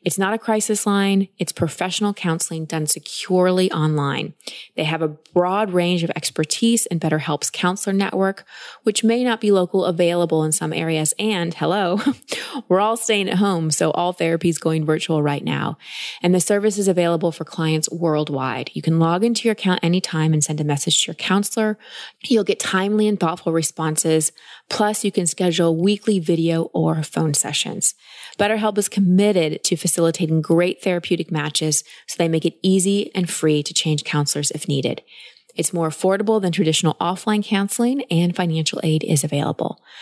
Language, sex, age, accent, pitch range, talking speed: English, female, 20-39, American, 160-205 Hz, 170 wpm